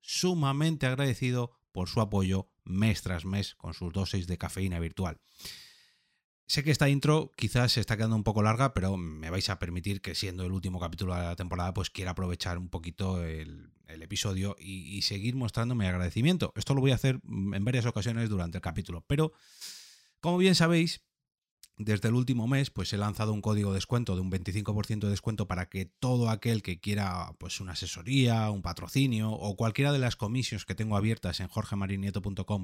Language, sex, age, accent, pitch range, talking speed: Spanish, male, 30-49, Spanish, 95-130 Hz, 190 wpm